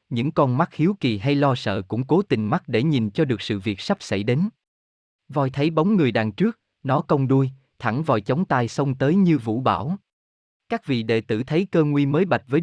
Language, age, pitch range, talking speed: Vietnamese, 20-39, 115-160 Hz, 235 wpm